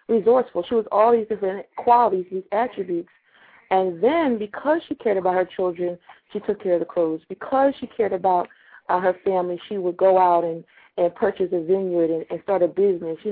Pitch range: 175-220 Hz